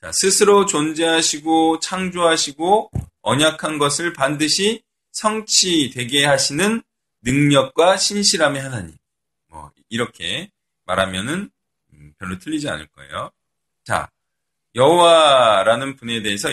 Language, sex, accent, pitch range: Korean, male, native, 135-200 Hz